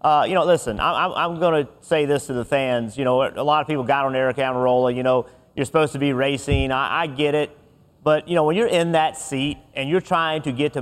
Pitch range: 135-155 Hz